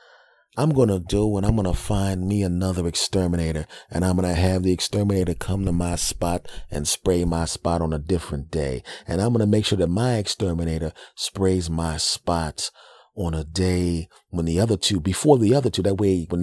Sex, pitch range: male, 80-100 Hz